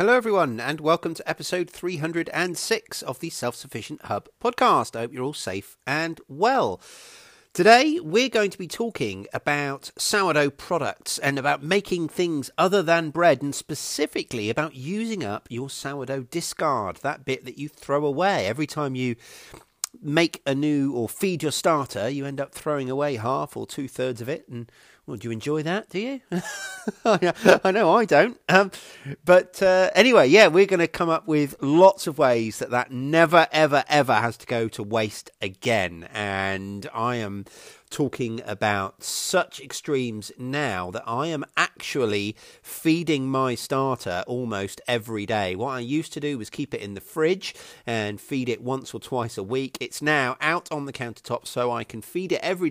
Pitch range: 120-170 Hz